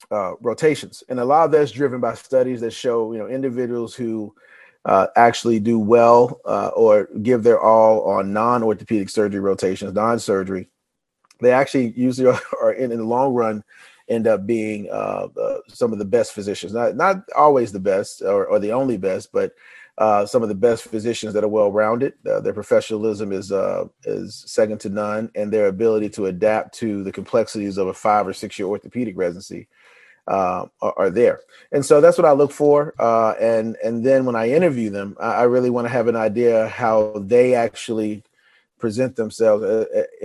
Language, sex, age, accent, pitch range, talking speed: English, male, 40-59, American, 110-150 Hz, 185 wpm